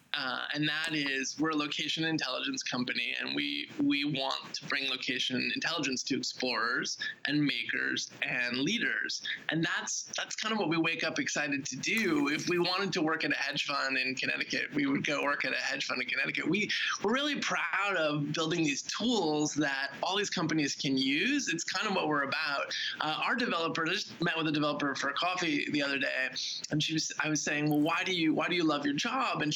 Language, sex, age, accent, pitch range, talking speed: English, male, 20-39, American, 150-235 Hz, 220 wpm